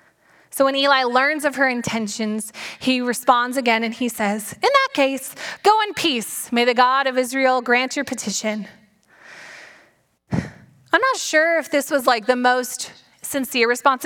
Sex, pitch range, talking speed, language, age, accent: female, 235-295 Hz, 160 wpm, English, 20-39, American